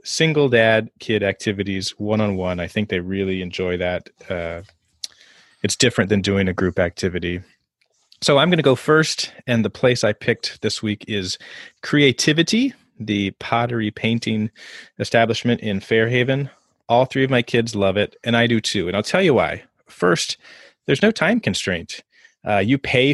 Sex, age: male, 30-49